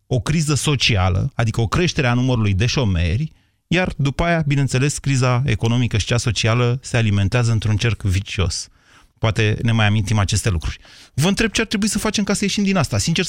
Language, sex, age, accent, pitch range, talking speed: Romanian, male, 30-49, native, 105-160 Hz, 195 wpm